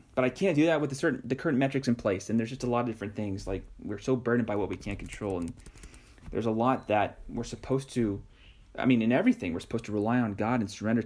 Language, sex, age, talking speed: English, male, 30-49, 265 wpm